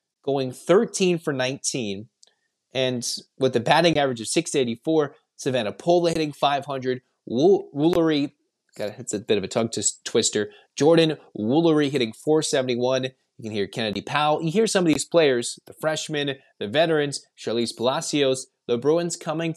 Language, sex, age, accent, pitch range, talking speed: English, male, 20-39, American, 125-165 Hz, 145 wpm